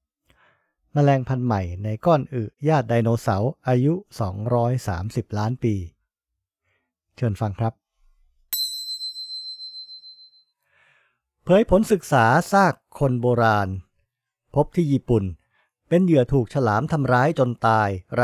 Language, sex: English, male